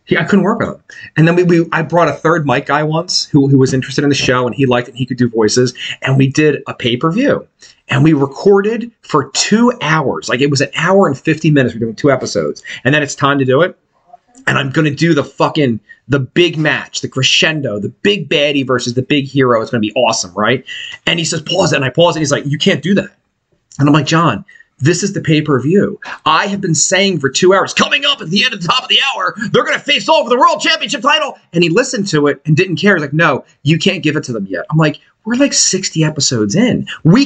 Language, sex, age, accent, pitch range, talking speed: English, male, 30-49, American, 140-200 Hz, 275 wpm